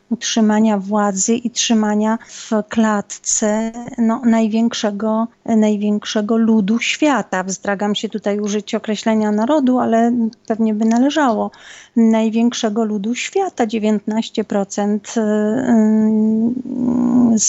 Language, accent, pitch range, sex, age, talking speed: Polish, native, 210-240 Hz, female, 40-59, 80 wpm